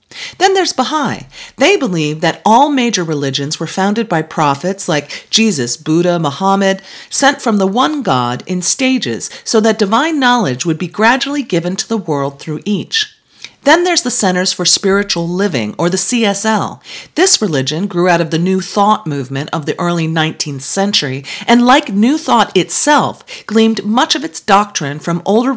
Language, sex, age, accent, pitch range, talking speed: English, female, 40-59, American, 160-230 Hz, 170 wpm